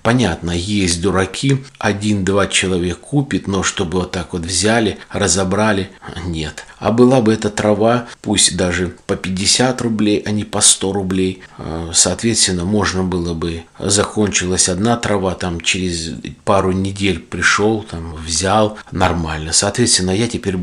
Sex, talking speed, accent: male, 135 wpm, native